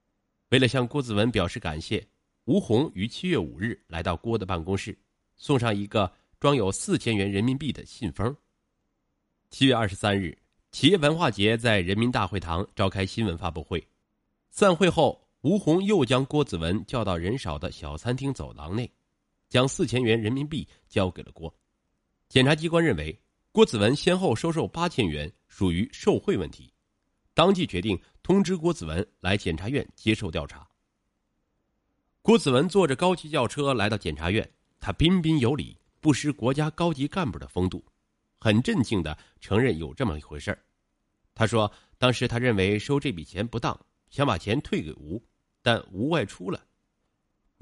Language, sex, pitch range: Chinese, male, 90-135 Hz